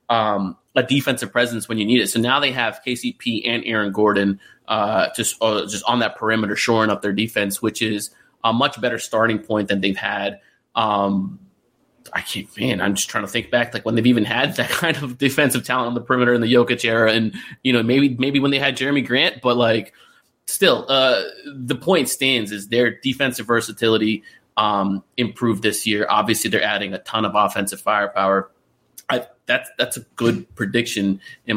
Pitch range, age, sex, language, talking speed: 105-135 Hz, 20-39, male, English, 200 wpm